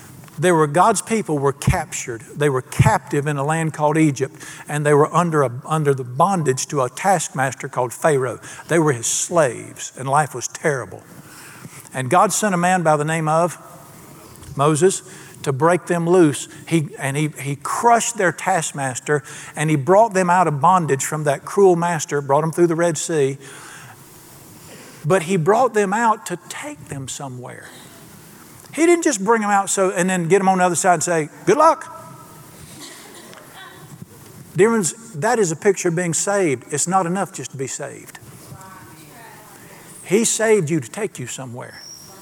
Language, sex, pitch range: English, male, 145-185 Hz